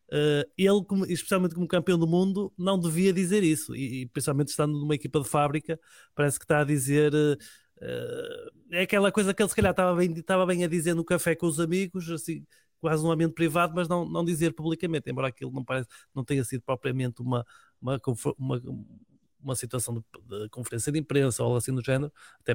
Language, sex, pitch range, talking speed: Portuguese, male, 135-175 Hz, 205 wpm